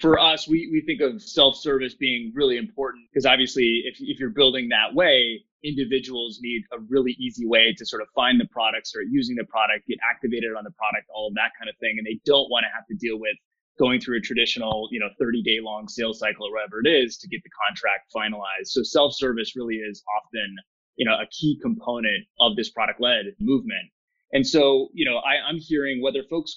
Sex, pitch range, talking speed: male, 115-160 Hz, 225 wpm